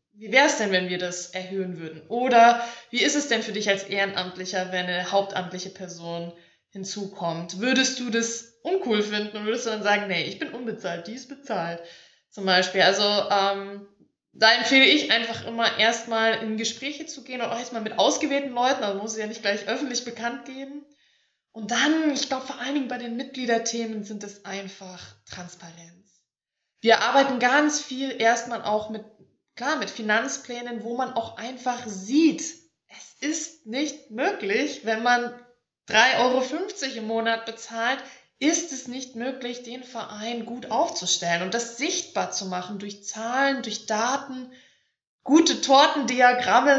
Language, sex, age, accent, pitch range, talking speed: German, female, 20-39, German, 205-260 Hz, 165 wpm